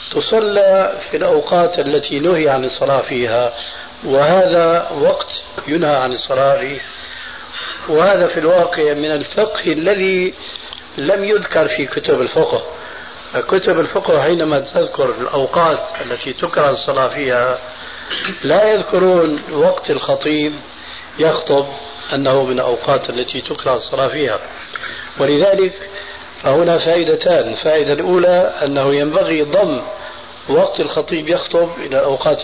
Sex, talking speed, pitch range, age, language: male, 110 wpm, 140-195 Hz, 50-69, Arabic